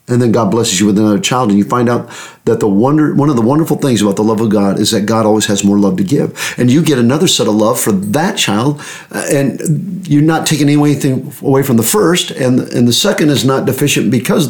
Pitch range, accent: 120-160 Hz, American